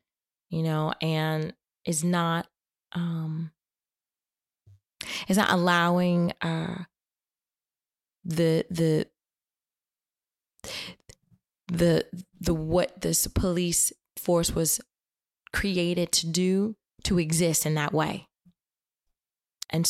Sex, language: female, English